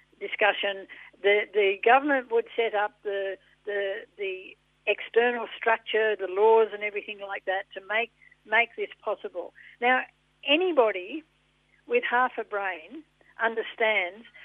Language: English